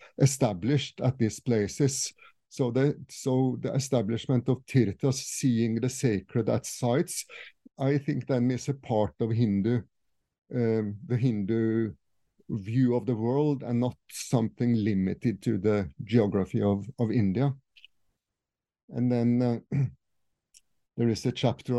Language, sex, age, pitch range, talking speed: English, male, 50-69, 110-130 Hz, 130 wpm